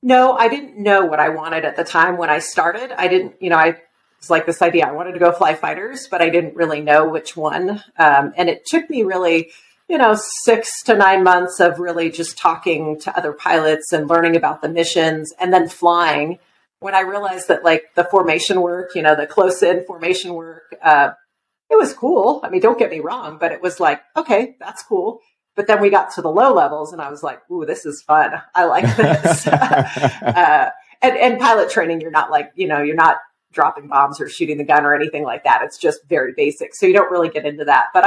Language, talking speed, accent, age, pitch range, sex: English, 230 wpm, American, 40-59, 160-215 Hz, female